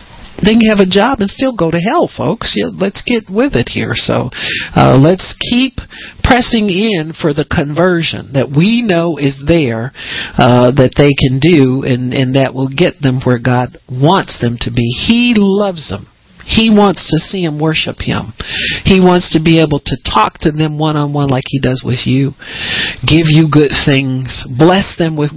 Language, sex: English, male